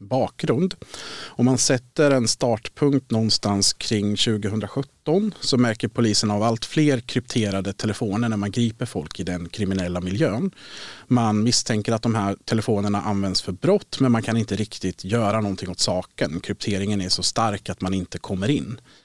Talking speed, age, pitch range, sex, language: 160 wpm, 40-59, 95-125 Hz, male, Swedish